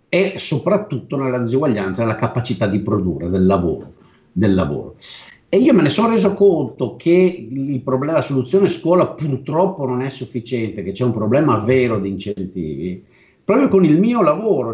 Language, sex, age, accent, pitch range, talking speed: Italian, male, 50-69, native, 110-165 Hz, 160 wpm